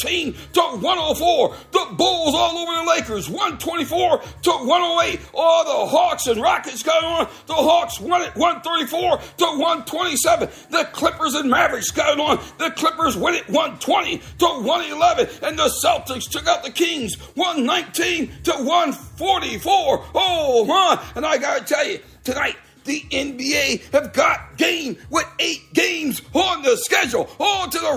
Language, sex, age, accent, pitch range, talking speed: English, male, 50-69, American, 305-355 Hz, 155 wpm